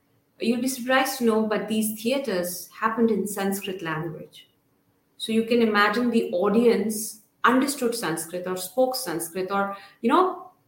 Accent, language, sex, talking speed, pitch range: Indian, English, female, 145 wpm, 180-235 Hz